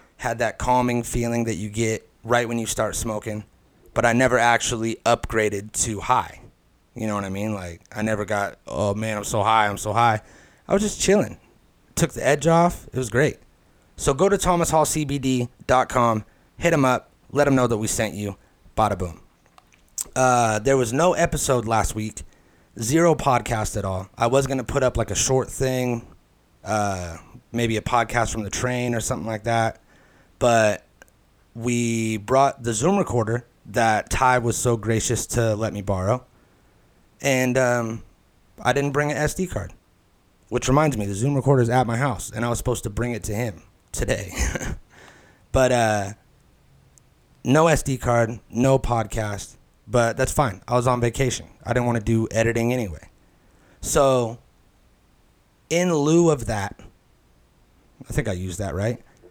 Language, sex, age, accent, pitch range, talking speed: English, male, 30-49, American, 105-130 Hz, 170 wpm